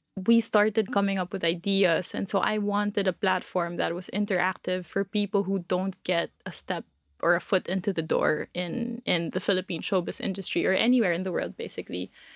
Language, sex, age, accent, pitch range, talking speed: English, female, 20-39, Filipino, 190-210 Hz, 195 wpm